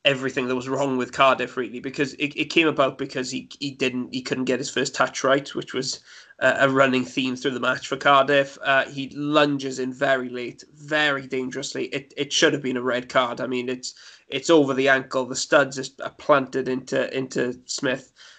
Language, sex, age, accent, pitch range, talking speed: English, male, 20-39, British, 130-140 Hz, 210 wpm